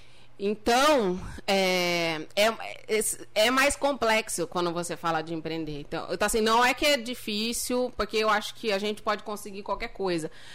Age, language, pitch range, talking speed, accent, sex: 20-39, Portuguese, 175-230 Hz, 155 wpm, Brazilian, female